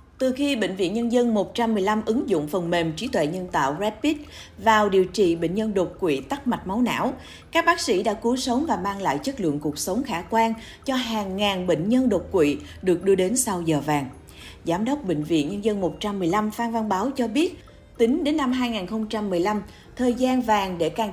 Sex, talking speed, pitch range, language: female, 215 wpm, 170-235 Hz, Vietnamese